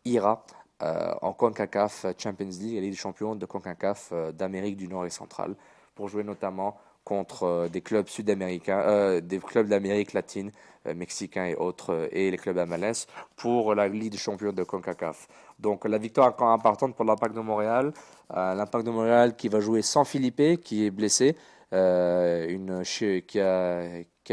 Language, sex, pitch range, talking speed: French, male, 95-115 Hz, 180 wpm